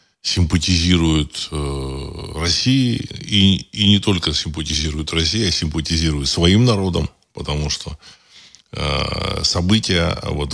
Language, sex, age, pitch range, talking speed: Russian, male, 20-39, 75-95 Hz, 100 wpm